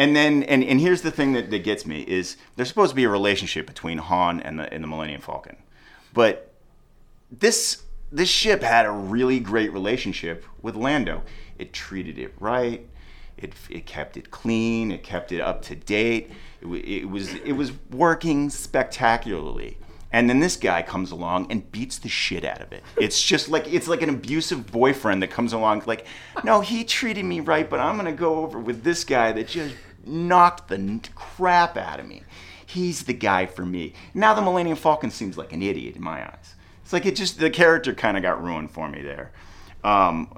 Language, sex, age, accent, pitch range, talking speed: English, male, 30-49, American, 95-155 Hz, 200 wpm